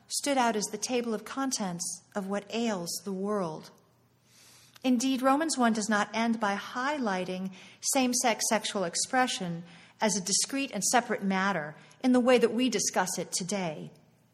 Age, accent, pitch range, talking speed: 50-69, American, 180-220 Hz, 155 wpm